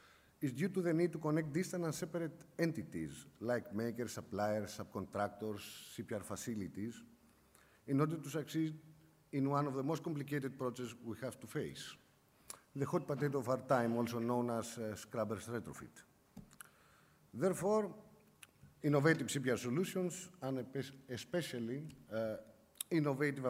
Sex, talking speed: male, 135 wpm